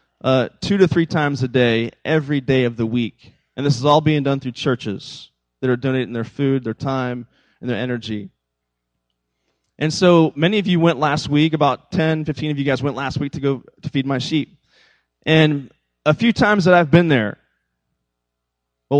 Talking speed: 195 wpm